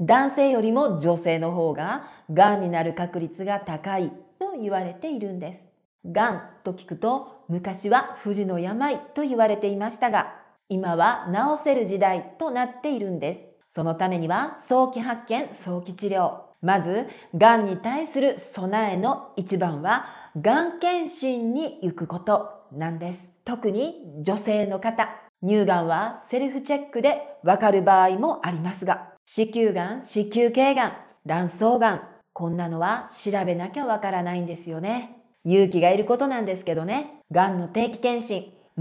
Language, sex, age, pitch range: Japanese, female, 40-59, 180-240 Hz